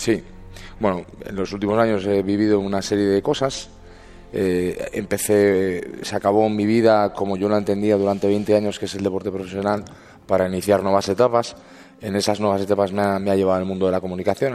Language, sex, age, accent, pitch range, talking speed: Spanish, male, 30-49, Spanish, 95-115 Hz, 200 wpm